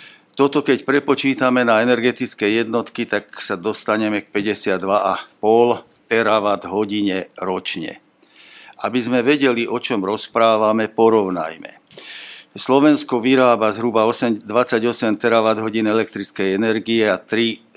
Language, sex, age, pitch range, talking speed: Slovak, male, 50-69, 105-125 Hz, 110 wpm